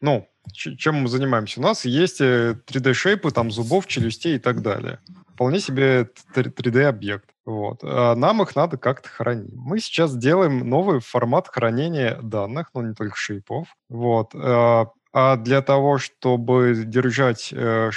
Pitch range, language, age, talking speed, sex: 115-140 Hz, Russian, 20-39, 135 wpm, male